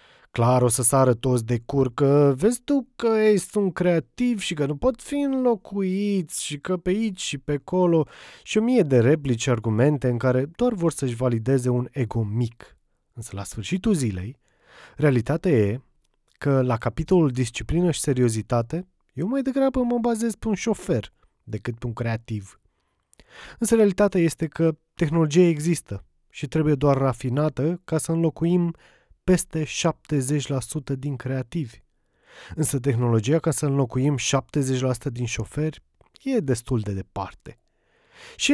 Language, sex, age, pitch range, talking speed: Romanian, male, 20-39, 125-175 Hz, 150 wpm